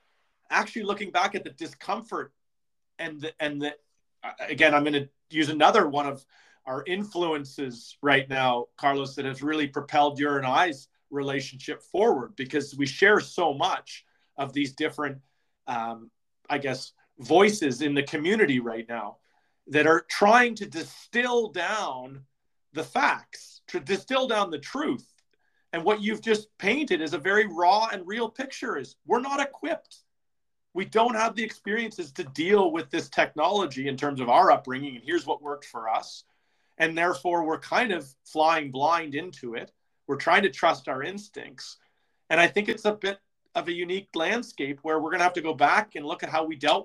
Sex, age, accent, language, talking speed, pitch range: male, 40-59, American, English, 175 wpm, 145-215 Hz